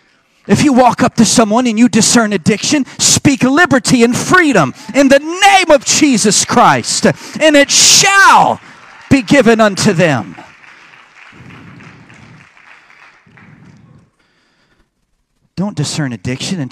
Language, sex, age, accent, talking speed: English, male, 40-59, American, 110 wpm